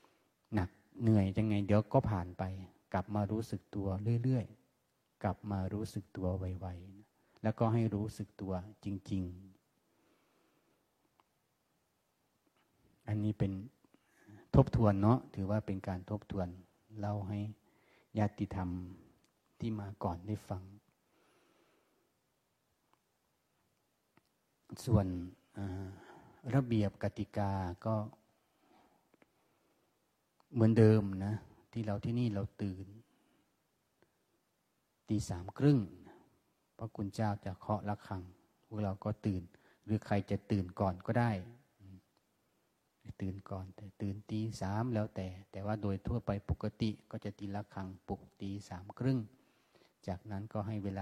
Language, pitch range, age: Thai, 95-110 Hz, 30-49